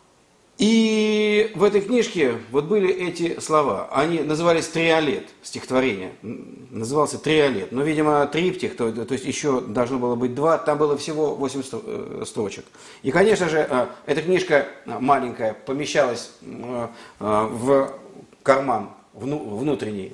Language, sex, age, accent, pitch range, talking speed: Russian, male, 50-69, native, 115-160 Hz, 120 wpm